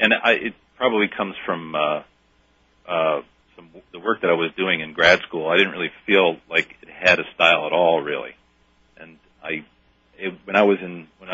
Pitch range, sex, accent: 75-95 Hz, male, American